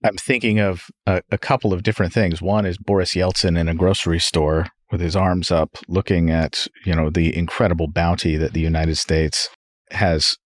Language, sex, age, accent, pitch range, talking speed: English, male, 40-59, American, 95-115 Hz, 185 wpm